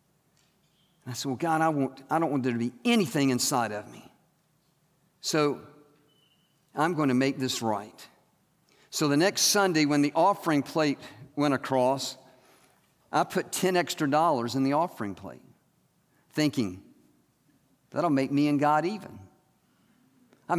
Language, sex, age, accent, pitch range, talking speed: English, male, 50-69, American, 135-170 Hz, 145 wpm